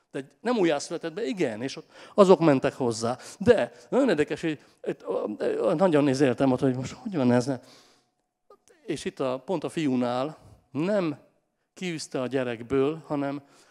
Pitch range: 130-170 Hz